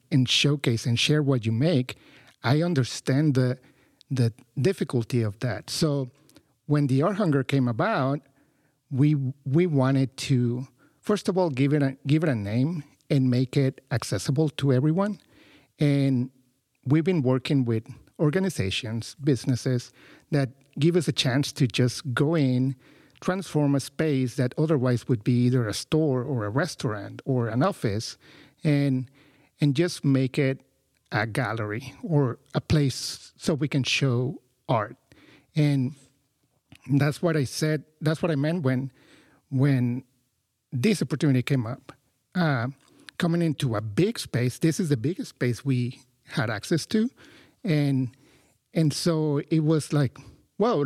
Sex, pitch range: male, 125-150 Hz